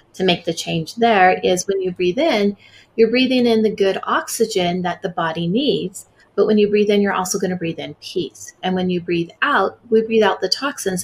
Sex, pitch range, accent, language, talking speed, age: female, 175-215 Hz, American, English, 230 wpm, 30-49